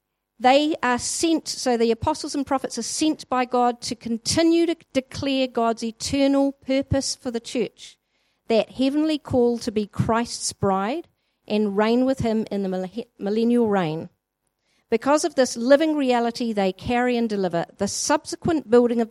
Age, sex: 50-69, female